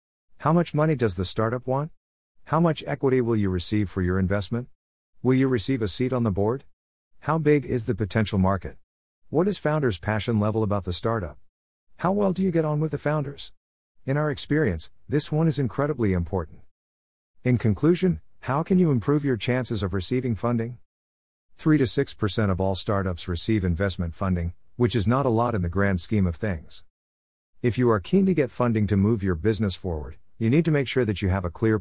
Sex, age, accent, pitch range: male, 50-69, American, 90-125 Hz